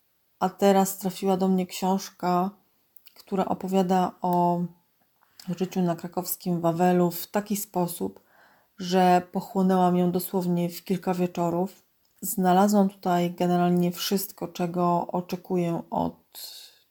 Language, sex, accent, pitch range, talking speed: Polish, female, native, 175-190 Hz, 105 wpm